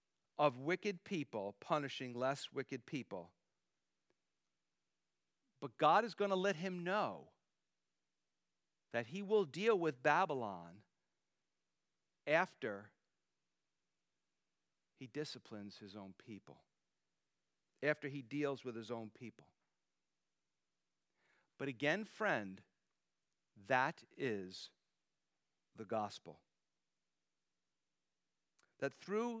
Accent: American